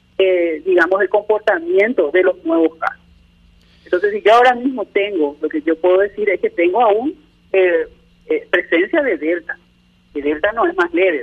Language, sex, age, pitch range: Spanish, male, 40-59, 170-240 Hz